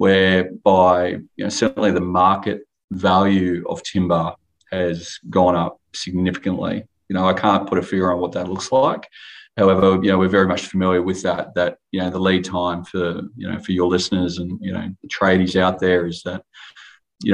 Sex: male